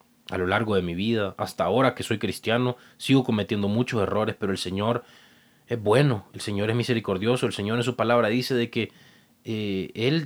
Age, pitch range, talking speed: 30-49, 115-150 Hz, 200 wpm